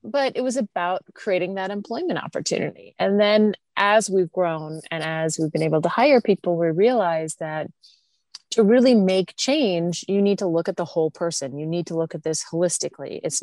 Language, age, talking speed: English, 30-49, 195 wpm